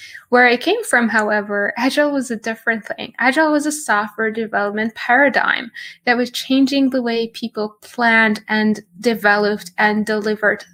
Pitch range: 220-280 Hz